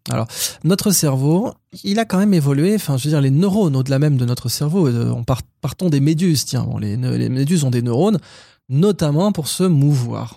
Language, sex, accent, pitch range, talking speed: French, male, French, 125-175 Hz, 210 wpm